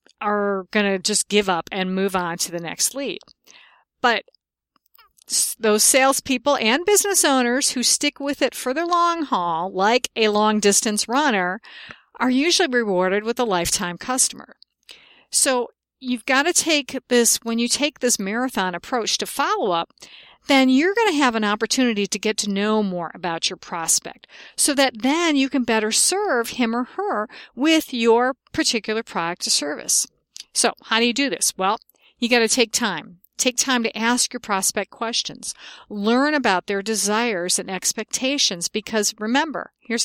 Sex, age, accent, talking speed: female, 50-69, American, 170 wpm